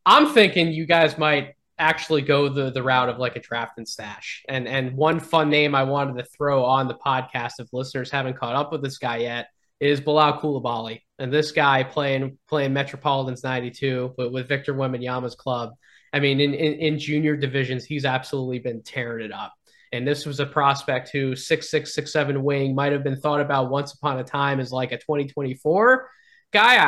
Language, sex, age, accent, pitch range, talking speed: English, male, 20-39, American, 130-150 Hz, 200 wpm